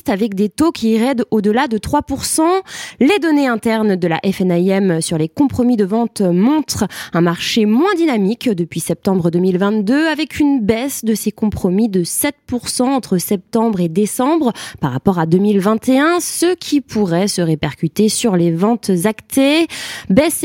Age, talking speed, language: 20-39, 155 wpm, French